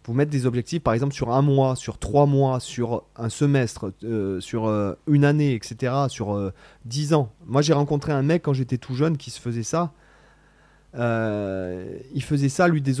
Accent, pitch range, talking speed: French, 110-140 Hz, 205 wpm